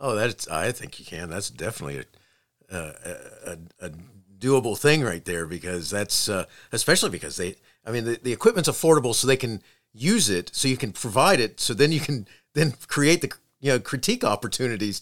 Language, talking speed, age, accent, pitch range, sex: English, 195 wpm, 50-69, American, 110-145 Hz, male